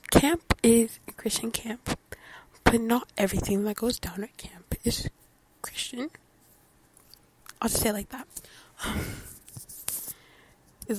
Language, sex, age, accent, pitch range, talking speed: English, female, 20-39, American, 200-235 Hz, 120 wpm